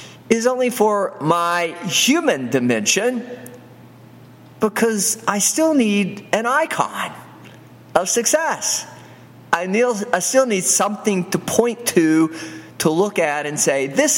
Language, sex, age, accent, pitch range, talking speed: English, male, 40-59, American, 140-230 Hz, 125 wpm